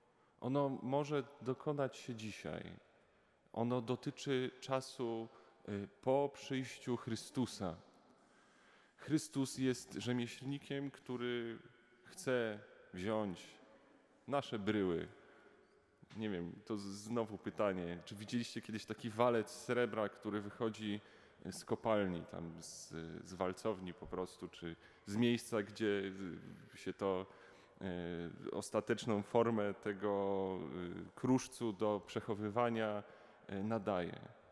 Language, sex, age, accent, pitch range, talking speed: Polish, male, 30-49, native, 105-130 Hz, 90 wpm